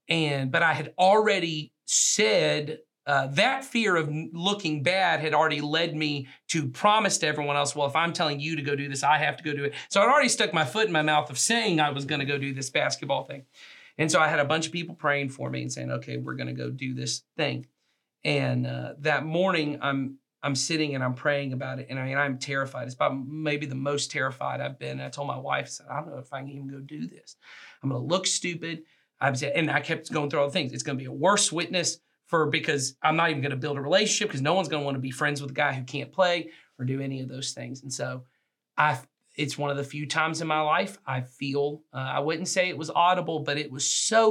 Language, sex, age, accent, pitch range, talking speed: English, male, 40-59, American, 135-160 Hz, 265 wpm